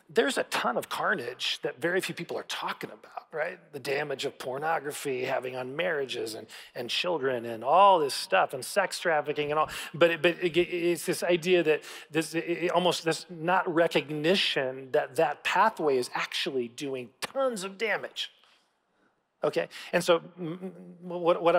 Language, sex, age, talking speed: English, male, 40-59, 165 wpm